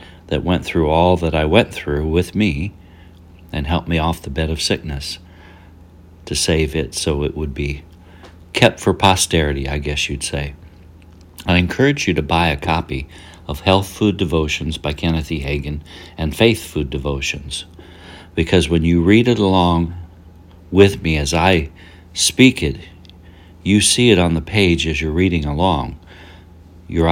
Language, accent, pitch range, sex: English, American, 80-90 Hz, male